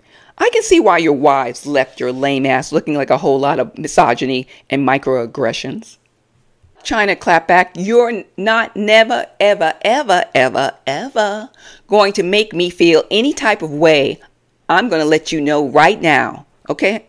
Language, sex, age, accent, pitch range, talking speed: English, female, 50-69, American, 140-215 Hz, 160 wpm